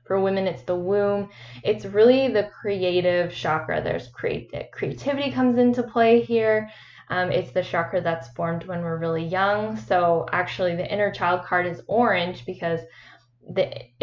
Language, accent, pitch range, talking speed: English, American, 165-195 Hz, 160 wpm